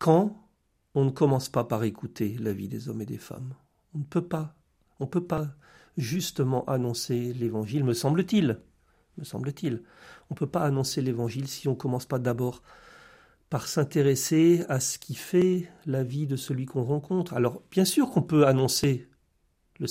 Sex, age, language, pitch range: male, 50-69, French, 125-160 Hz